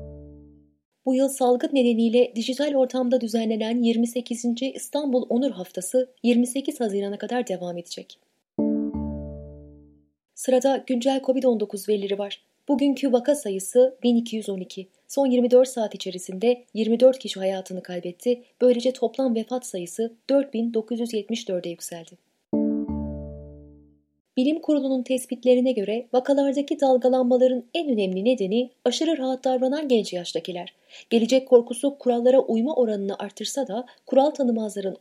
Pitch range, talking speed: 190-255 Hz, 105 wpm